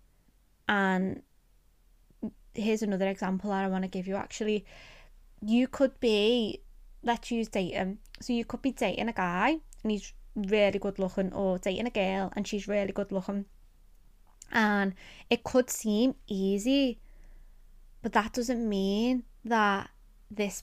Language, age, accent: English, 20-39, British